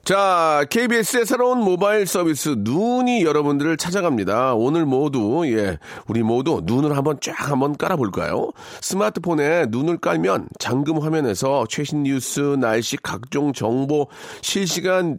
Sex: male